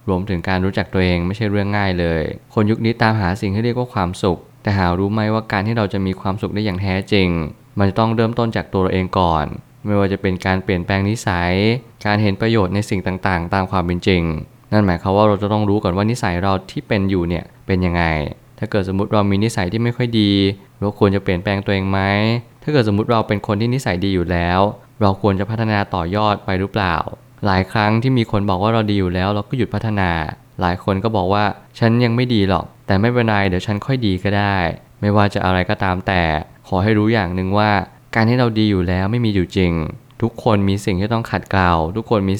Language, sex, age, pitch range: Thai, male, 20-39, 95-110 Hz